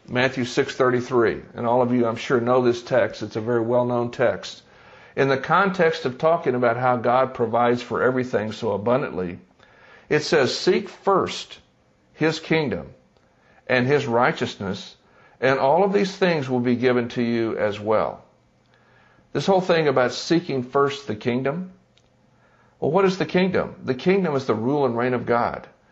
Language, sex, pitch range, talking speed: English, male, 120-145 Hz, 165 wpm